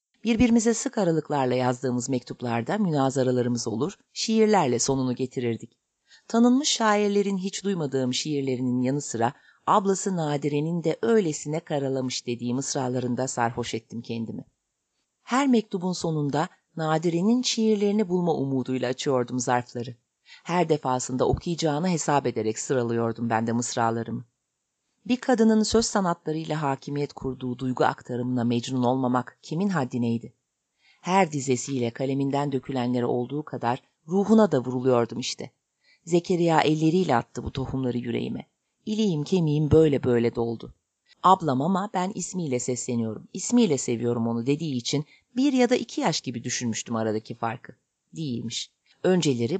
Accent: native